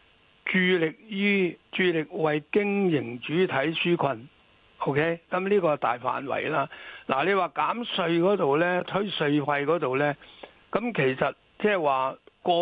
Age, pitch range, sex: 60-79, 145-185 Hz, male